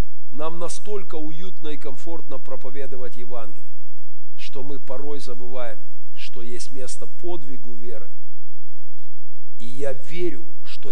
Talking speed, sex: 110 wpm, male